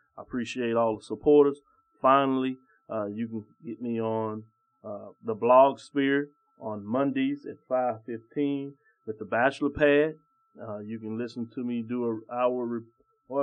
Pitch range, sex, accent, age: 115-145 Hz, male, American, 30-49